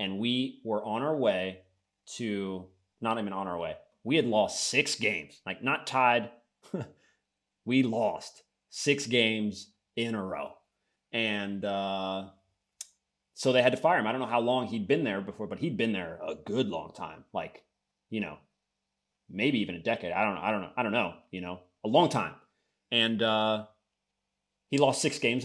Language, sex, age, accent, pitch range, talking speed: English, male, 30-49, American, 100-120 Hz, 185 wpm